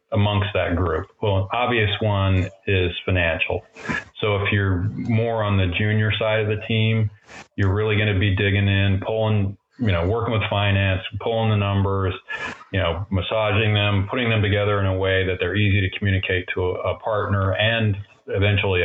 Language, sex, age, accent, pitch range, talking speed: English, male, 30-49, American, 95-105 Hz, 180 wpm